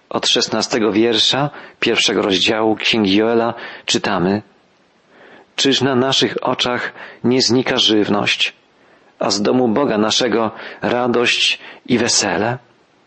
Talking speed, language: 105 wpm, Polish